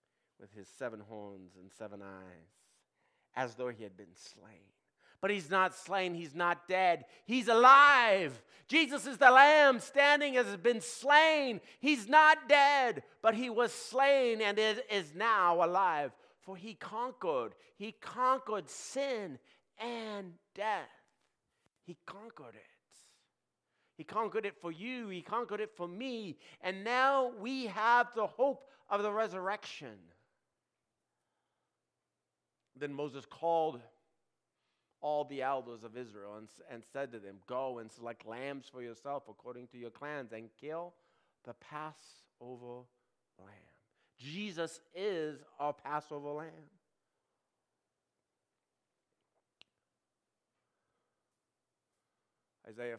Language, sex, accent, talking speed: English, male, American, 120 wpm